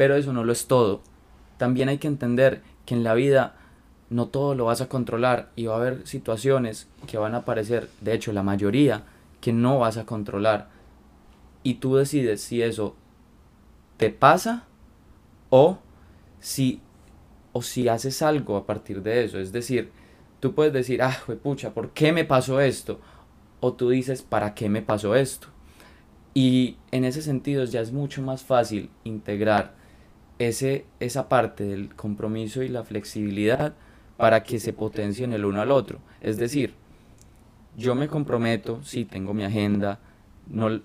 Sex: male